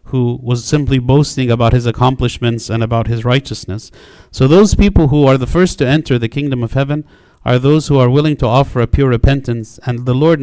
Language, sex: English, male